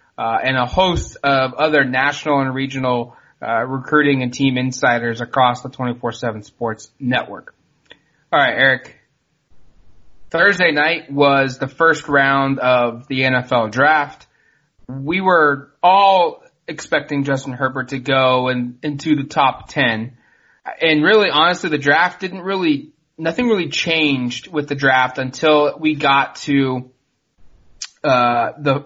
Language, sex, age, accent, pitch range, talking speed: English, male, 20-39, American, 125-150 Hz, 135 wpm